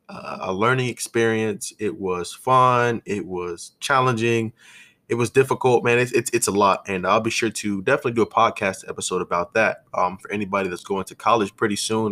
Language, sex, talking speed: English, male, 200 wpm